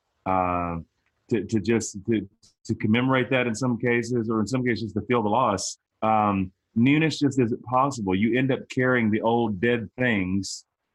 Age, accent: 30-49, American